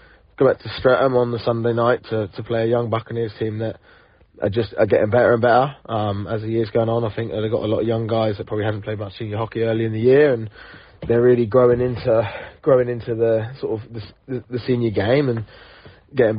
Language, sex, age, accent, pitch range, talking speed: English, male, 20-39, British, 105-115 Hz, 240 wpm